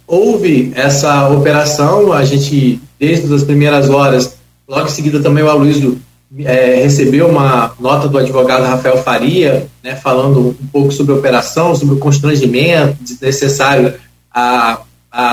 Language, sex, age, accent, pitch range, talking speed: Portuguese, male, 20-39, Brazilian, 135-165 Hz, 135 wpm